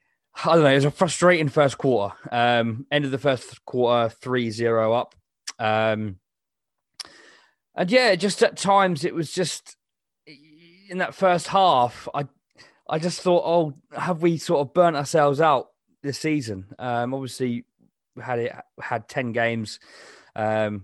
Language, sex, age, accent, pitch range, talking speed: English, male, 20-39, British, 115-150 Hz, 155 wpm